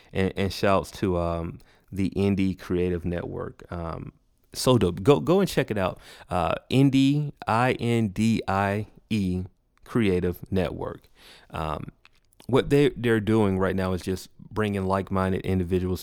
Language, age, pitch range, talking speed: English, 30-49, 90-100 Hz, 130 wpm